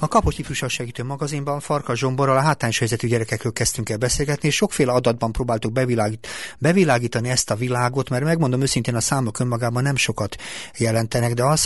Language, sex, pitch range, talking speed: Hungarian, male, 115-135 Hz, 165 wpm